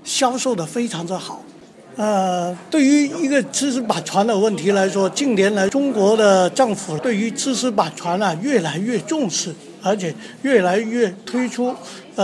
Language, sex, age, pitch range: Chinese, male, 50-69, 180-240 Hz